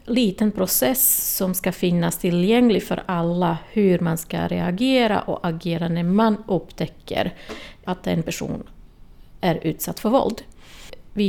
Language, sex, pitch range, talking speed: Swedish, female, 175-215 Hz, 135 wpm